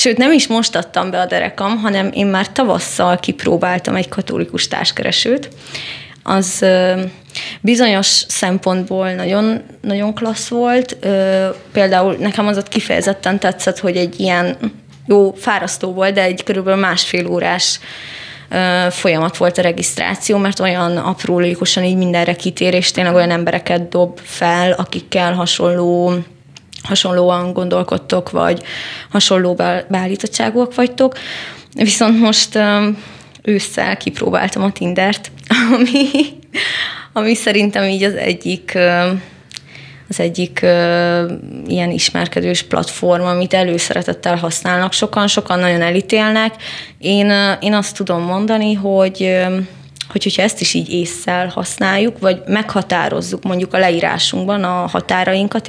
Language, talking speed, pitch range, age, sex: Hungarian, 115 wpm, 175-205 Hz, 20-39, female